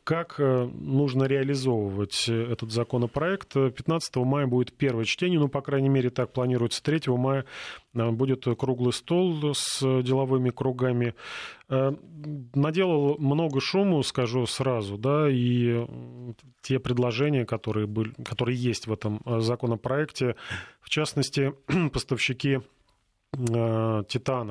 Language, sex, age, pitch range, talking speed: Russian, male, 30-49, 120-140 Hz, 110 wpm